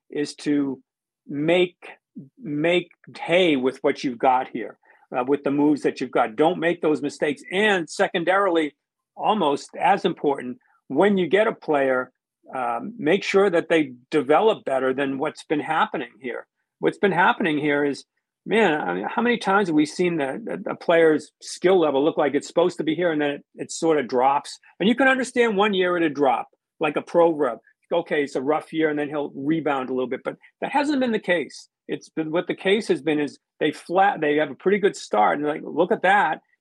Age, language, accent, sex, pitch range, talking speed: 50-69, English, American, male, 145-185 Hz, 210 wpm